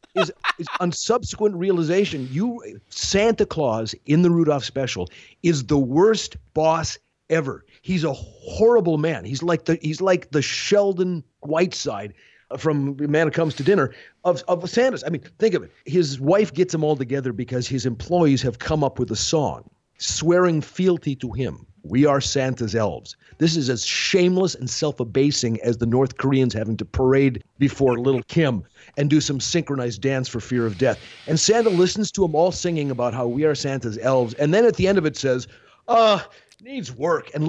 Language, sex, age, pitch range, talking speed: English, male, 40-59, 130-180 Hz, 185 wpm